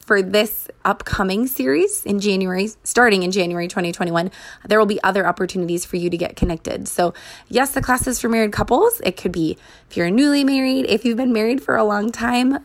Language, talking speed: English, 200 wpm